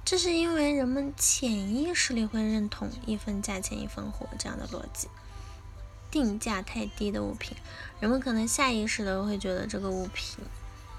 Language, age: Chinese, 10-29